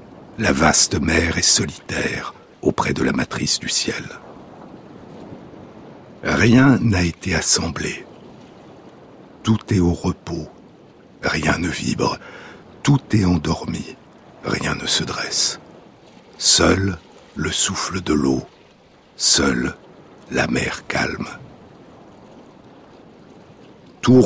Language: French